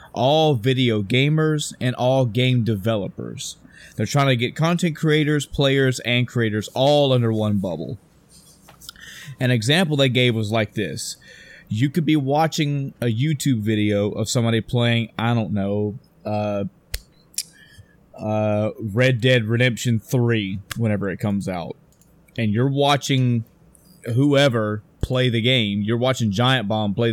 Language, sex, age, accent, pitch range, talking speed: English, male, 20-39, American, 110-140 Hz, 135 wpm